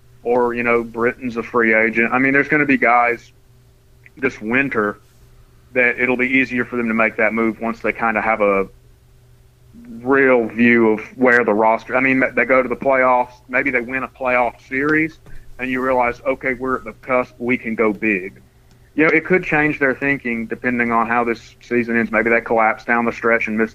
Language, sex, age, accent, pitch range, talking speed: English, male, 30-49, American, 115-125 Hz, 210 wpm